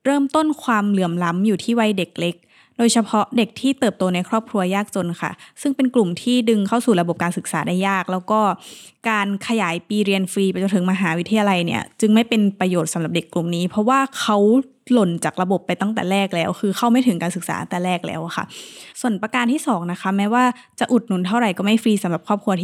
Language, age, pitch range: Thai, 20-39, 180-225 Hz